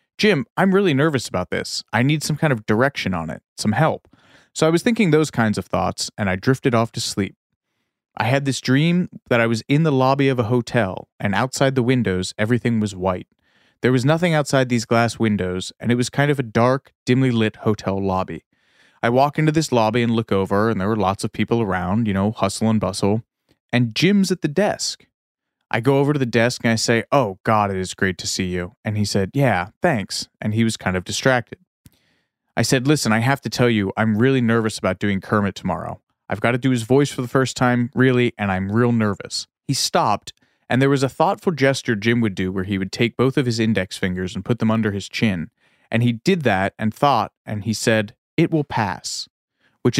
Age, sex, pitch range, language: 30-49, male, 105-135 Hz, English